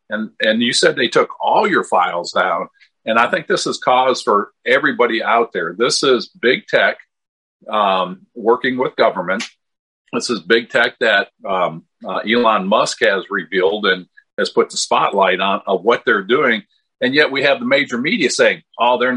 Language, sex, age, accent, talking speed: English, male, 50-69, American, 185 wpm